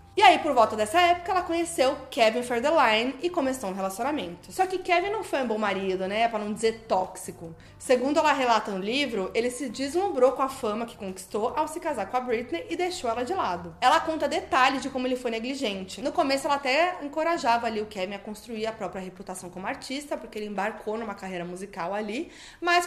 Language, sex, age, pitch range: Portuguese, female, 20-39, 215-290 Hz